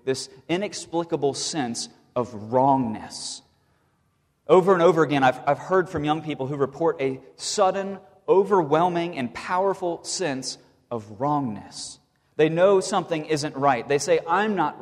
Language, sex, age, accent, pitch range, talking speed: English, male, 30-49, American, 125-165 Hz, 140 wpm